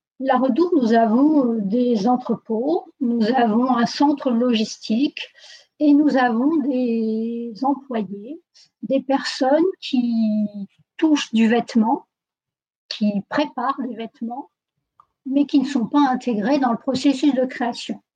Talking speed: 120 wpm